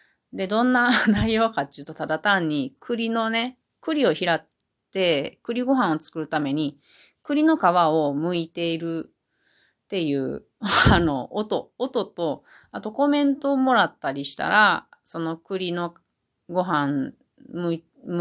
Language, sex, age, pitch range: Japanese, female, 30-49, 150-205 Hz